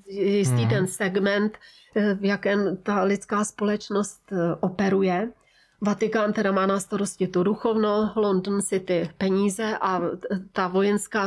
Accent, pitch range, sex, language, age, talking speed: native, 200-230 Hz, female, Czech, 30-49, 115 wpm